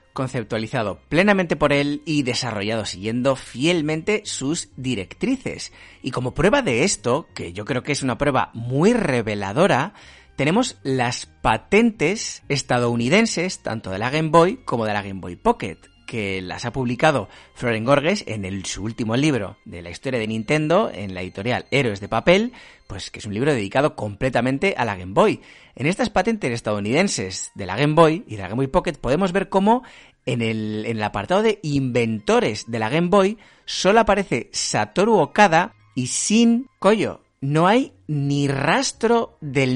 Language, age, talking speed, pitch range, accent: Spanish, 30-49, 170 wpm, 110-165 Hz, Spanish